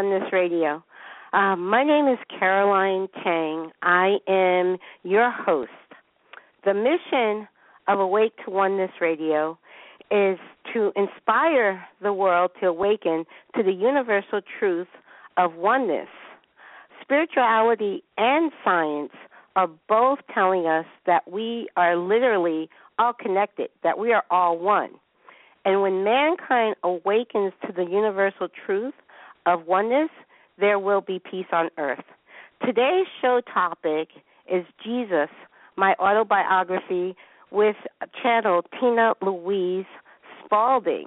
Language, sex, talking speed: English, female, 115 wpm